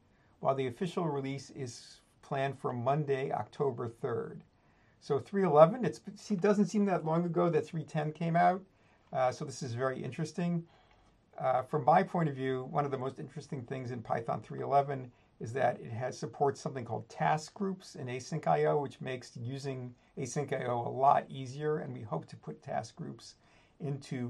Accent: American